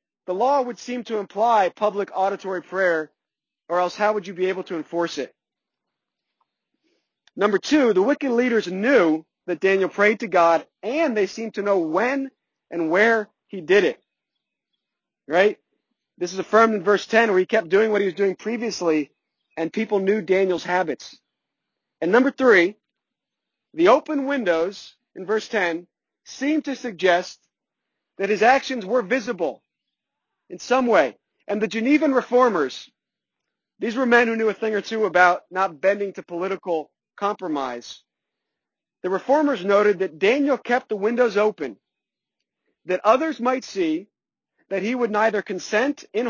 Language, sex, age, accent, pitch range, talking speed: English, male, 40-59, American, 185-245 Hz, 155 wpm